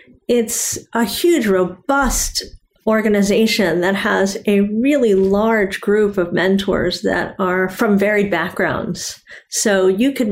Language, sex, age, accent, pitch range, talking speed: English, female, 40-59, American, 180-210 Hz, 120 wpm